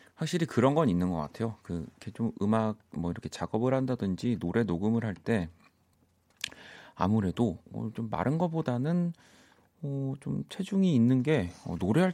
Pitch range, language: 90-140 Hz, Korean